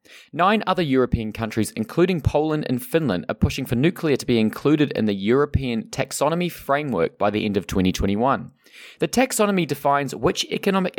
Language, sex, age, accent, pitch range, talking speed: English, male, 20-39, Australian, 110-165 Hz, 165 wpm